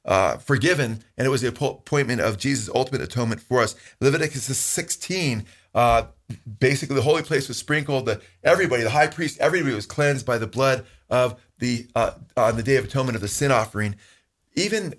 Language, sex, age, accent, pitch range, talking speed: English, male, 30-49, American, 115-145 Hz, 180 wpm